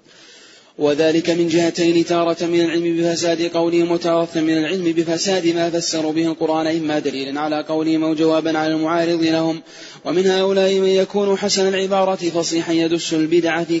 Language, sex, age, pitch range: Arabic, male, 20-39, 160-170 Hz